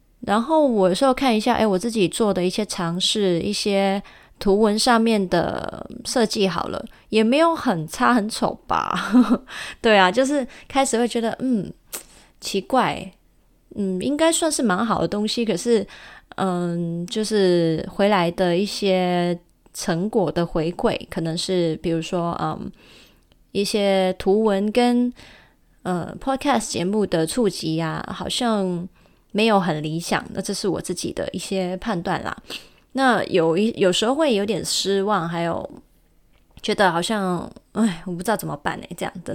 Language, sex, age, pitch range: Chinese, female, 20-39, 175-225 Hz